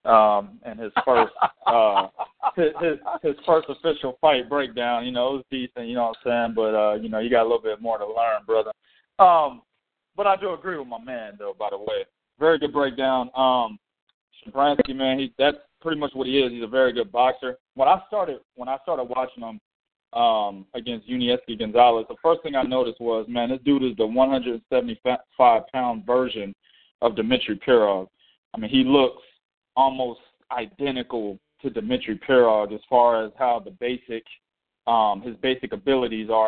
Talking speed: 190 wpm